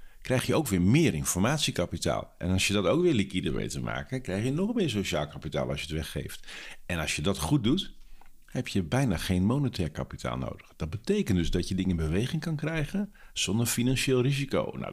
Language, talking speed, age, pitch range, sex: Dutch, 215 wpm, 50-69, 95-125 Hz, male